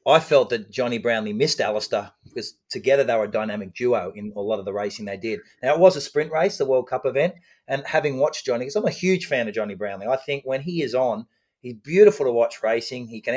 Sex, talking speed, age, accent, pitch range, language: male, 255 wpm, 30-49, Australian, 110-150 Hz, English